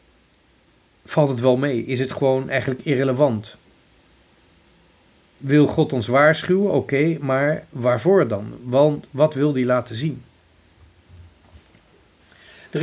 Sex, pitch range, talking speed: male, 110-150 Hz, 110 wpm